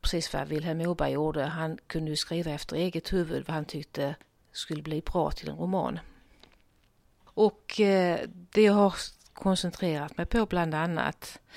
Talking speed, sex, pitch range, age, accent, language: 145 wpm, female, 155-195 Hz, 40-59, native, Swedish